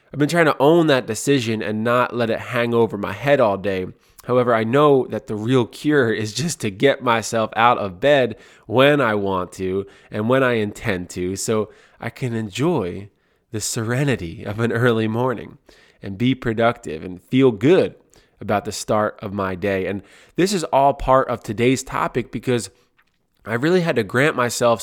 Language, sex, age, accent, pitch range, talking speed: English, male, 20-39, American, 105-135 Hz, 190 wpm